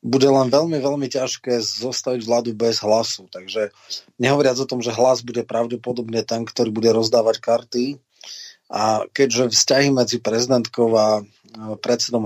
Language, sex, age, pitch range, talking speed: Slovak, male, 30-49, 115-135 Hz, 140 wpm